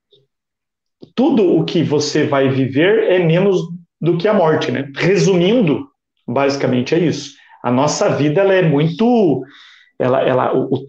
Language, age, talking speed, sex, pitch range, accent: Portuguese, 40-59, 145 wpm, male, 150-235 Hz, Brazilian